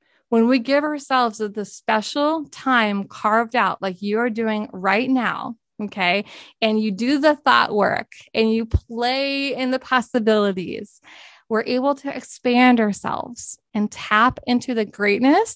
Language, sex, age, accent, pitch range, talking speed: English, female, 20-39, American, 210-260 Hz, 145 wpm